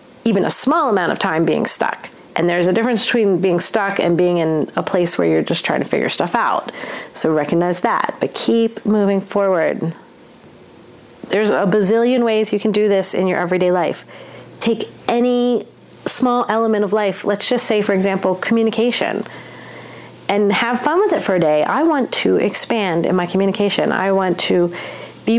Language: English